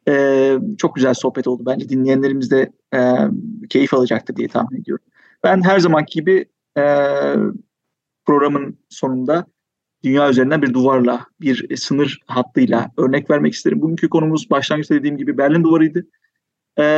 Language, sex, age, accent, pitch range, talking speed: Turkish, male, 40-59, native, 135-190 Hz, 140 wpm